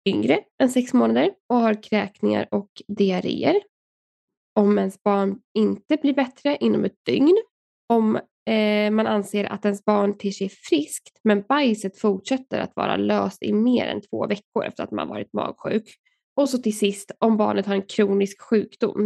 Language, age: Swedish, 10-29